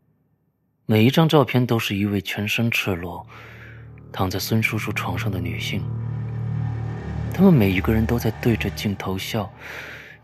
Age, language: 30-49, Chinese